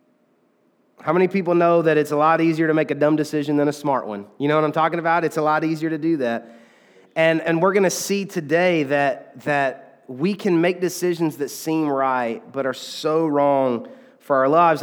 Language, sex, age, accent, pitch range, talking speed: English, male, 30-49, American, 140-185 Hz, 220 wpm